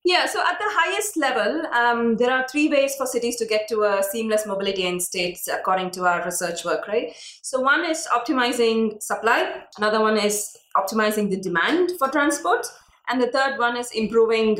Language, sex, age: English, female, 20-39